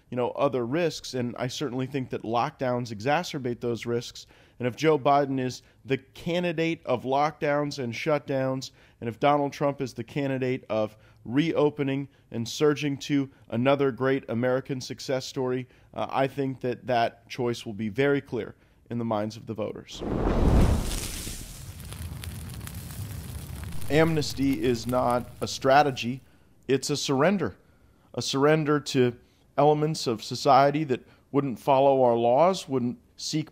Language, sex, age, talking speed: English, male, 40-59, 140 wpm